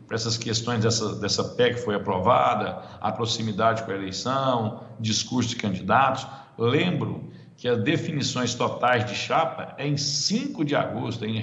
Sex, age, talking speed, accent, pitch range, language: male, 60-79, 150 wpm, Brazilian, 110-145 Hz, Portuguese